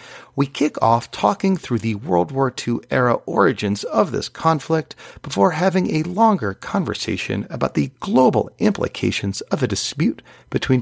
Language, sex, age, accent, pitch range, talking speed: English, male, 40-59, American, 100-135 Hz, 150 wpm